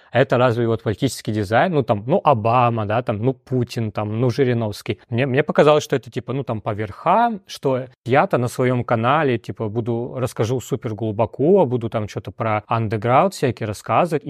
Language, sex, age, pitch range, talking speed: Russian, male, 20-39, 115-140 Hz, 180 wpm